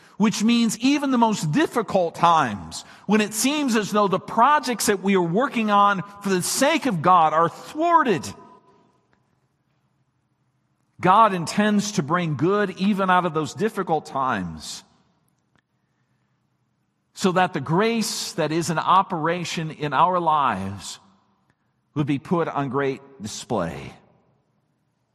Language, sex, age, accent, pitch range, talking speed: English, male, 50-69, American, 135-200 Hz, 130 wpm